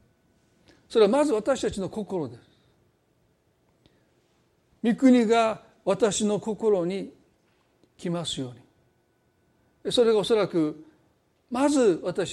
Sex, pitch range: male, 165-215 Hz